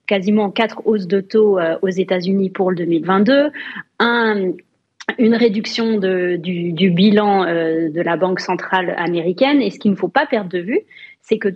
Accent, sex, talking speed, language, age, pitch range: French, female, 170 wpm, French, 30-49, 185-225 Hz